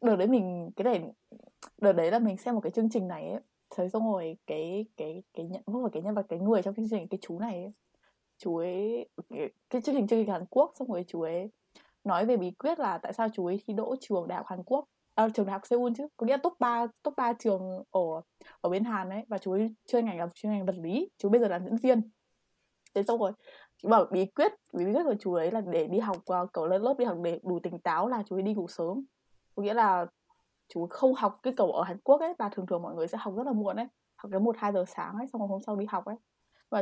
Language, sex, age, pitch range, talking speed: Vietnamese, female, 20-39, 180-230 Hz, 285 wpm